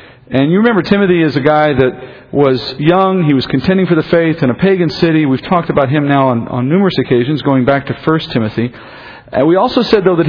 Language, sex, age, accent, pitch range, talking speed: English, male, 40-59, American, 130-175 Hz, 235 wpm